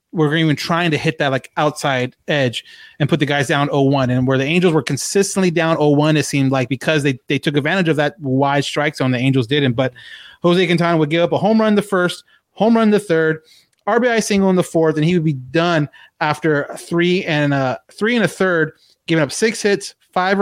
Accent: American